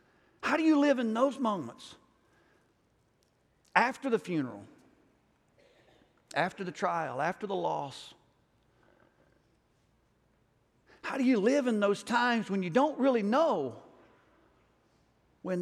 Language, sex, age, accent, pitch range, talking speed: English, male, 50-69, American, 150-235 Hz, 110 wpm